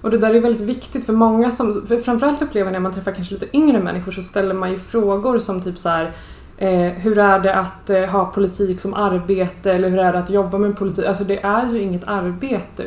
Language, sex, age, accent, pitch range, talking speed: English, female, 20-39, Swedish, 180-215 Hz, 240 wpm